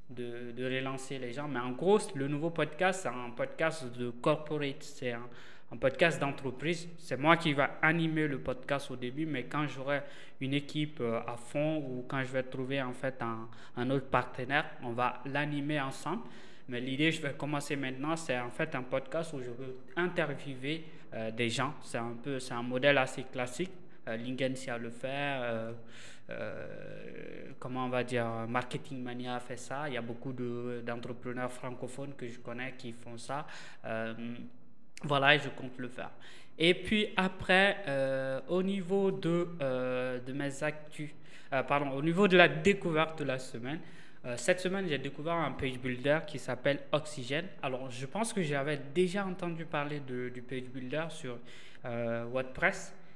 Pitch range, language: 125-155 Hz, French